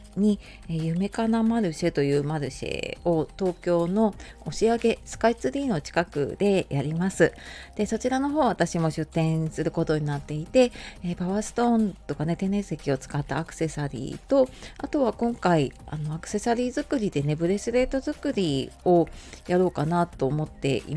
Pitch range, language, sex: 155-220 Hz, Japanese, female